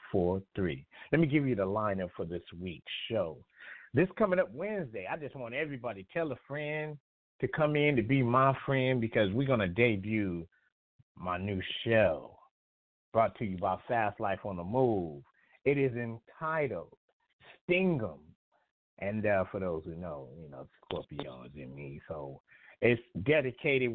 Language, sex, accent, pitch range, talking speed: English, male, American, 95-140 Hz, 165 wpm